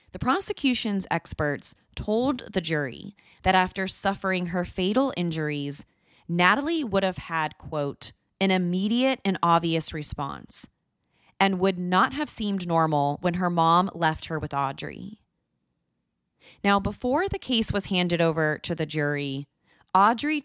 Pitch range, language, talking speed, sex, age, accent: 155-205 Hz, English, 135 wpm, female, 30-49, American